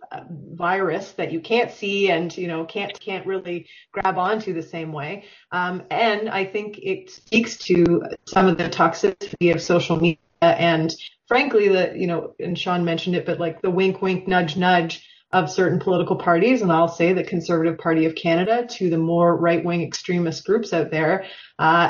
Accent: American